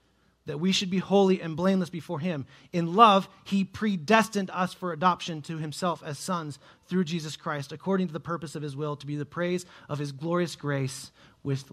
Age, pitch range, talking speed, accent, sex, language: 30-49, 125-155 Hz, 200 wpm, American, male, English